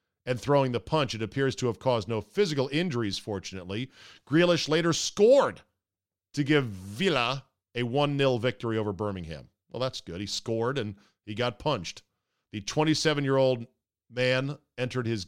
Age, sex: 40-59, male